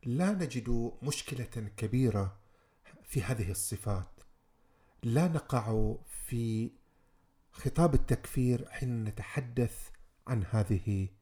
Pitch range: 105-130 Hz